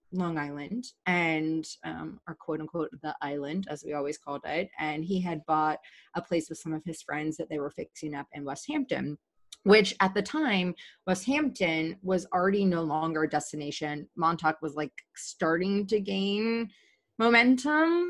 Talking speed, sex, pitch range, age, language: 170 wpm, female, 150-190 Hz, 30-49, English